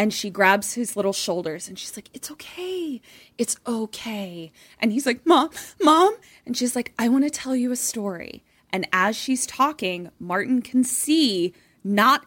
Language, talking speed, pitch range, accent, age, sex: English, 175 wpm, 190-255 Hz, American, 20-39, female